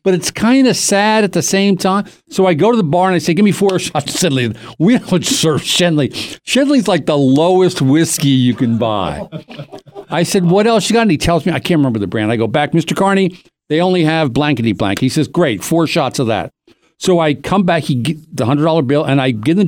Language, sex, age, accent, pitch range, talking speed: English, male, 50-69, American, 150-215 Hz, 245 wpm